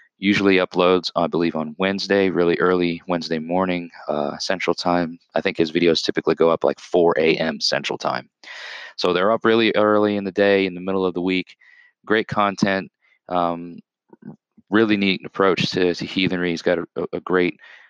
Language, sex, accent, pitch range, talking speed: English, male, American, 85-95 Hz, 180 wpm